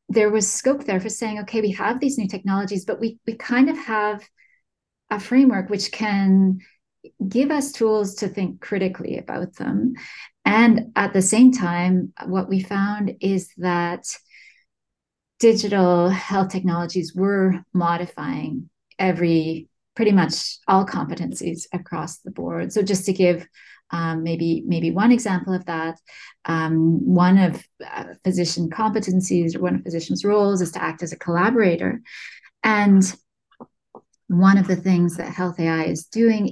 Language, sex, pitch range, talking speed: English, female, 175-210 Hz, 150 wpm